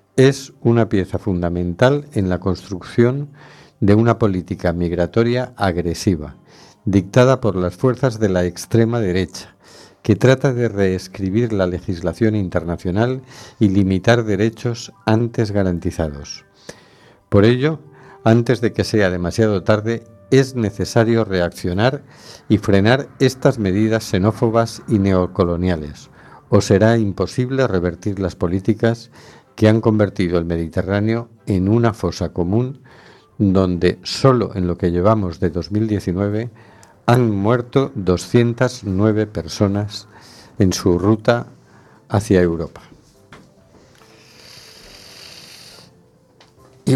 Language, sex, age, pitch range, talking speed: Spanish, male, 50-69, 95-120 Hz, 105 wpm